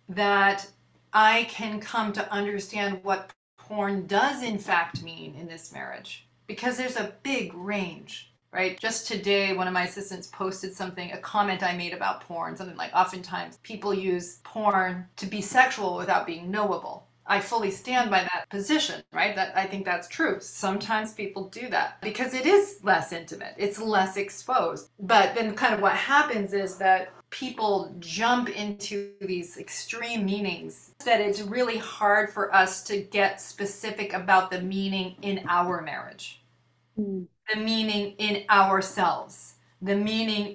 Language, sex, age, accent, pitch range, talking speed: English, female, 30-49, American, 185-215 Hz, 155 wpm